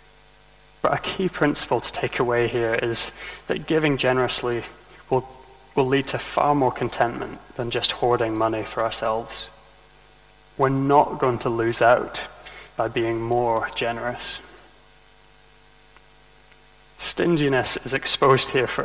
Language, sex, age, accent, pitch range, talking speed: English, male, 20-39, British, 120-145 Hz, 125 wpm